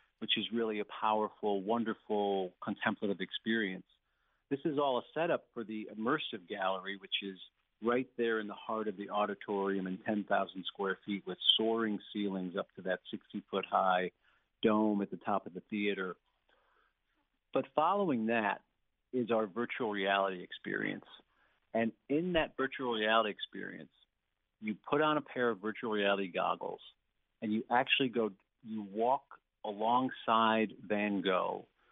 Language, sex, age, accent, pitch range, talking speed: English, male, 50-69, American, 100-120 Hz, 145 wpm